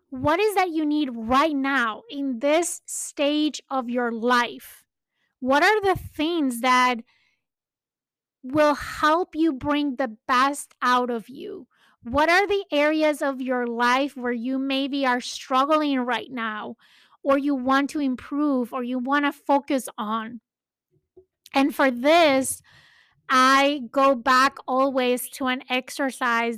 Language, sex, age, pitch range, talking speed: English, female, 20-39, 245-285 Hz, 140 wpm